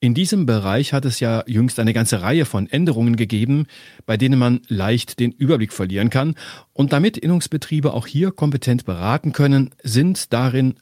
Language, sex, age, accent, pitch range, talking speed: German, male, 40-59, German, 110-150 Hz, 170 wpm